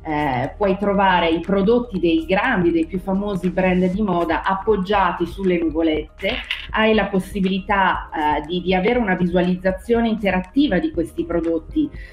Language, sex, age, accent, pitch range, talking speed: Italian, female, 30-49, native, 170-200 Hz, 145 wpm